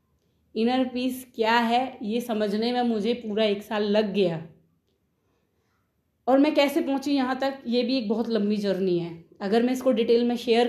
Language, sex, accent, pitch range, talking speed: Hindi, female, native, 200-240 Hz, 180 wpm